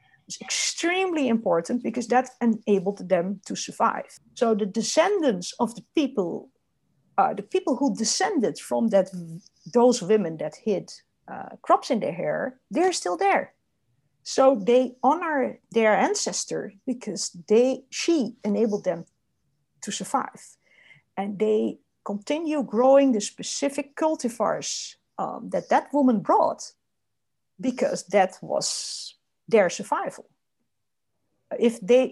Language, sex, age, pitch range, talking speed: English, female, 50-69, 205-275 Hz, 120 wpm